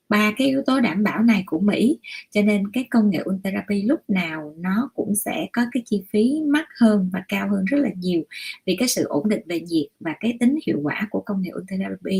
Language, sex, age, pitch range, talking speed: Vietnamese, female, 20-39, 175-230 Hz, 235 wpm